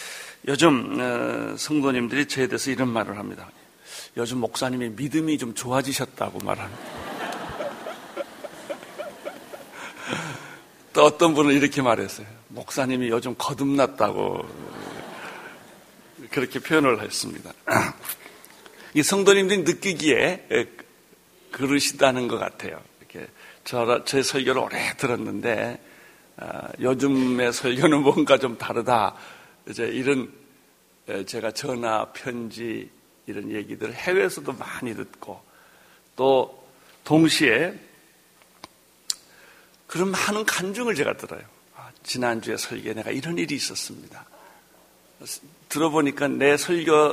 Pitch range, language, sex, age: 120-150 Hz, Korean, male, 60-79